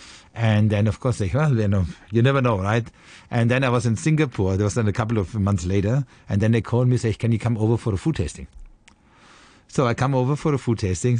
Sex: male